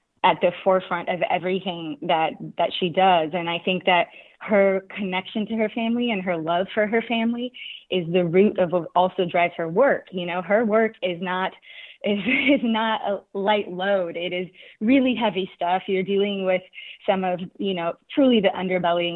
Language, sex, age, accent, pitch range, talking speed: English, female, 20-39, American, 180-220 Hz, 190 wpm